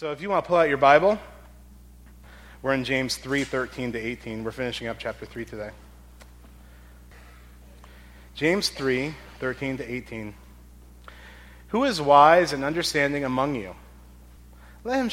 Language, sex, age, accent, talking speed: English, male, 30-49, American, 145 wpm